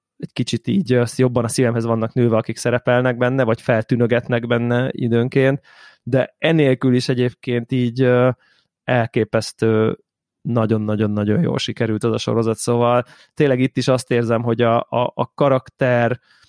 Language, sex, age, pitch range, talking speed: Hungarian, male, 20-39, 115-125 Hz, 140 wpm